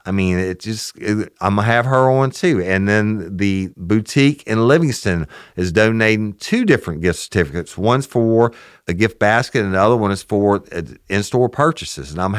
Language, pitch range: English, 85-110 Hz